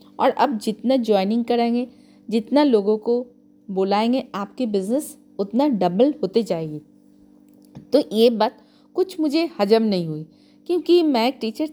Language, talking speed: Hindi, 140 wpm